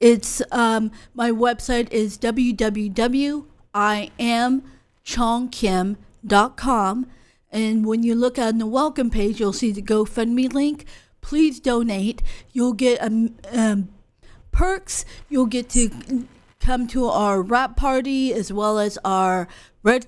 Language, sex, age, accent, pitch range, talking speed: English, female, 40-59, American, 220-260 Hz, 115 wpm